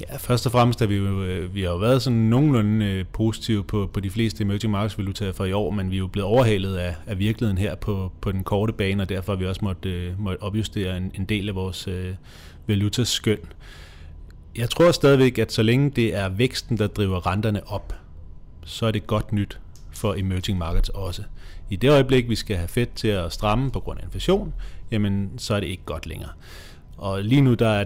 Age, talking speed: 30-49, 220 wpm